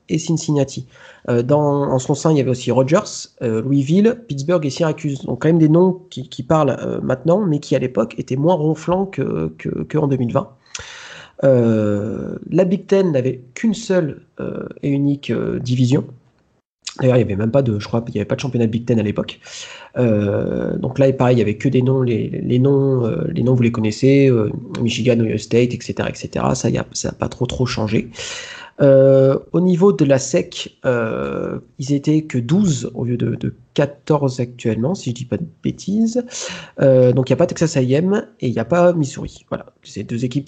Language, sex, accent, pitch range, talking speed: French, male, French, 120-160 Hz, 210 wpm